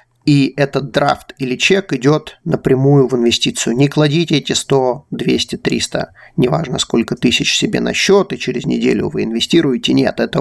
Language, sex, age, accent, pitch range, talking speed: Russian, male, 30-49, native, 130-155 Hz, 160 wpm